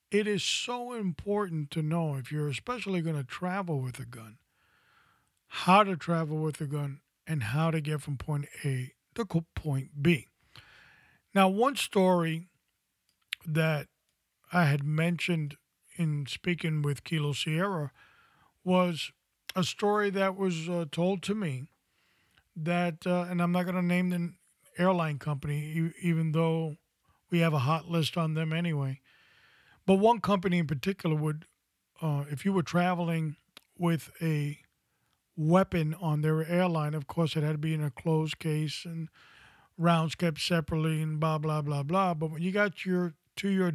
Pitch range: 150-175 Hz